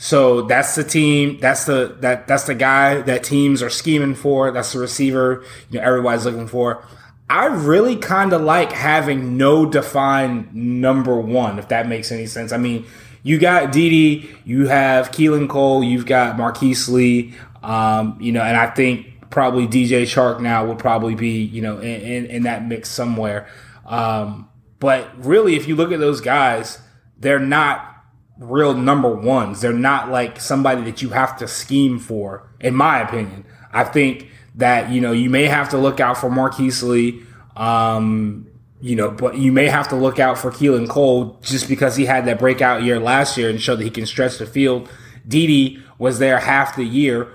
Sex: male